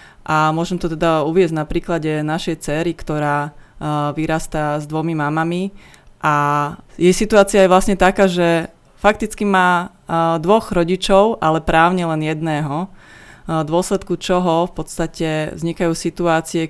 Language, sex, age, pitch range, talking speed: Slovak, female, 30-49, 150-170 Hz, 140 wpm